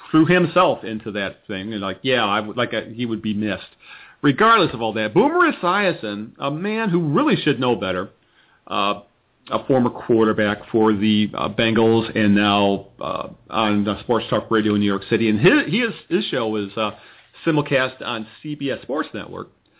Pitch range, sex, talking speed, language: 110-150 Hz, male, 190 wpm, English